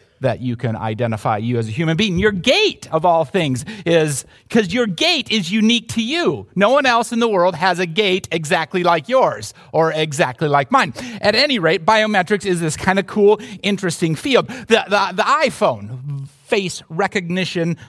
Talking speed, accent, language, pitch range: 185 wpm, American, English, 135-200 Hz